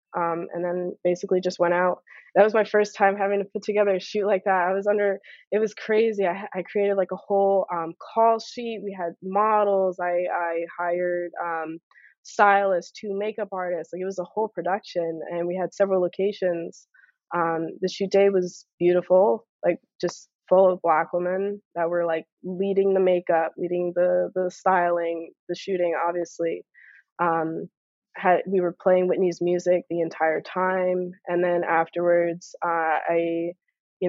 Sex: female